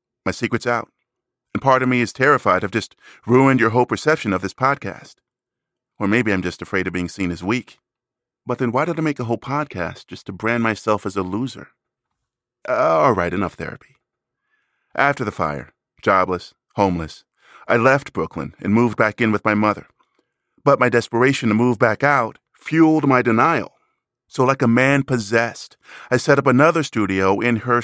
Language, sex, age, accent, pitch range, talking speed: English, male, 30-49, American, 105-130 Hz, 185 wpm